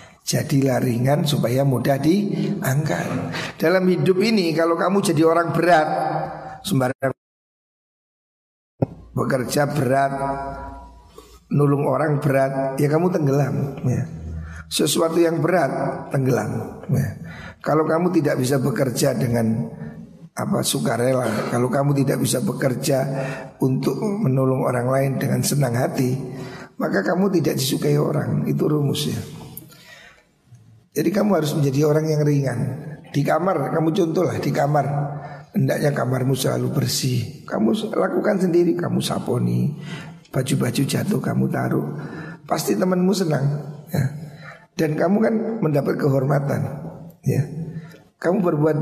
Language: Indonesian